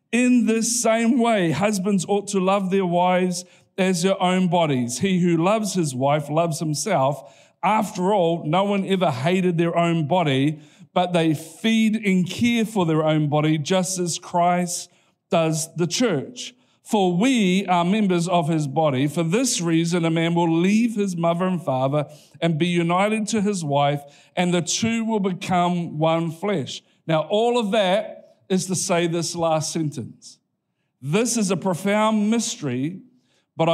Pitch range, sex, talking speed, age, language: 165-205 Hz, male, 165 wpm, 50-69, English